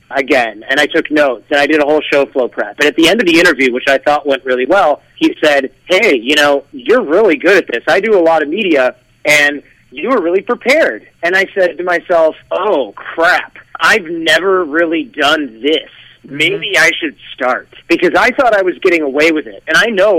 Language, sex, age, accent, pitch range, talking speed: English, male, 30-49, American, 140-180 Hz, 225 wpm